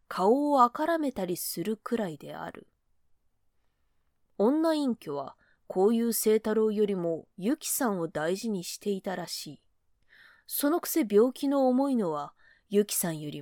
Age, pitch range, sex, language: 20-39, 175-235 Hz, female, Japanese